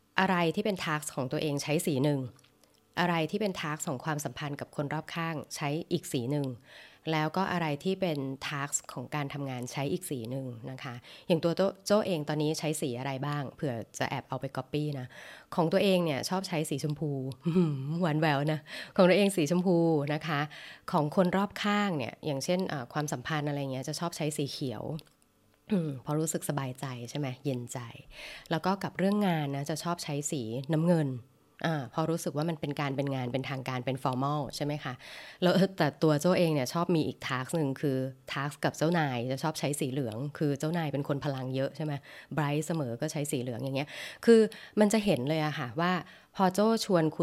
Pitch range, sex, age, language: 140-170 Hz, female, 20-39, English